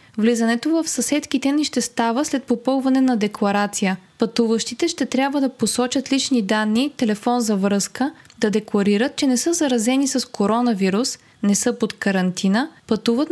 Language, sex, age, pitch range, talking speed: Bulgarian, female, 20-39, 210-255 Hz, 150 wpm